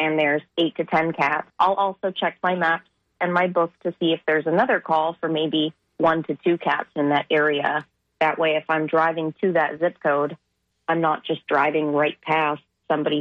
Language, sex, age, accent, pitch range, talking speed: English, female, 30-49, American, 150-170 Hz, 205 wpm